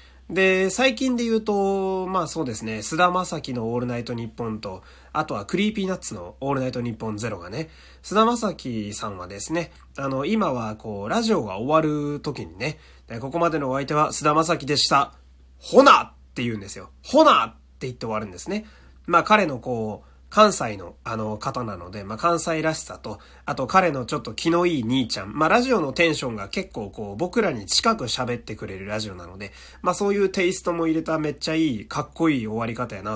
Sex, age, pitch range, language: male, 30-49, 105-180 Hz, Japanese